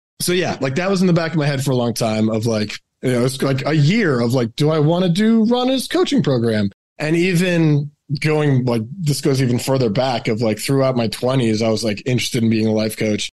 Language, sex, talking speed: English, male, 250 wpm